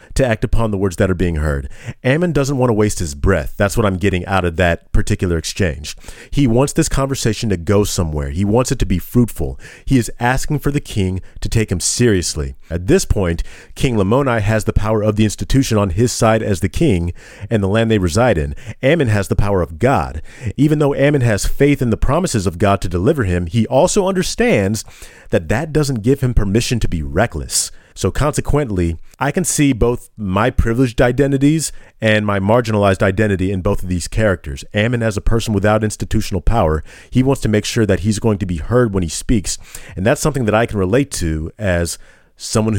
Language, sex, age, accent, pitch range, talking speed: English, male, 40-59, American, 95-120 Hz, 210 wpm